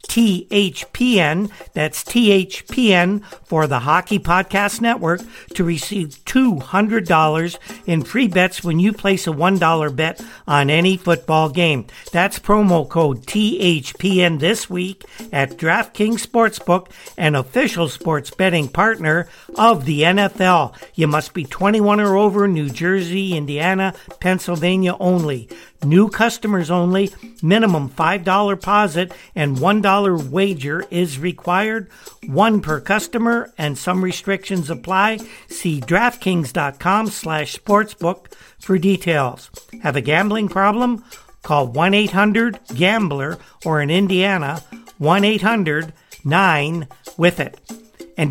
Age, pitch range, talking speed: 60-79, 165-205 Hz, 110 wpm